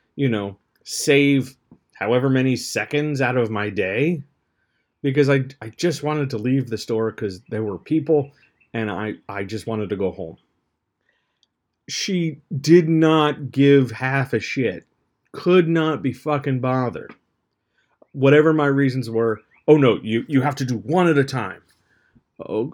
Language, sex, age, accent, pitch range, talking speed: English, male, 40-59, American, 115-145 Hz, 155 wpm